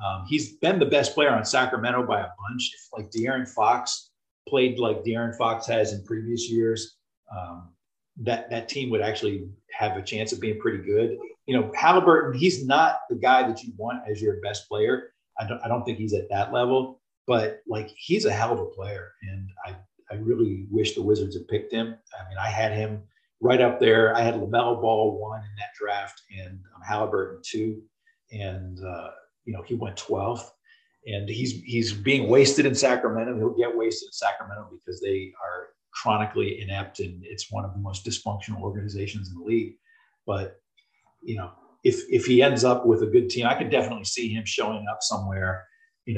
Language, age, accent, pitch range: English, 40-59, American, 105-135 Hz